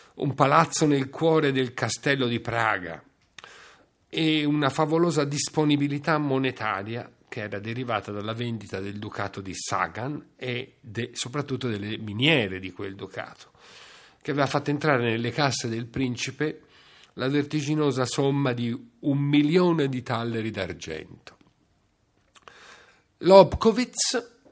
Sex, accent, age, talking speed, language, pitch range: male, native, 50-69, 115 wpm, Italian, 110-145 Hz